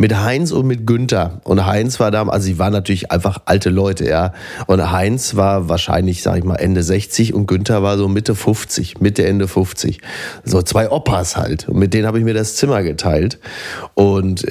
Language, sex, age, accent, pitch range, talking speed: German, male, 30-49, German, 100-120 Hz, 205 wpm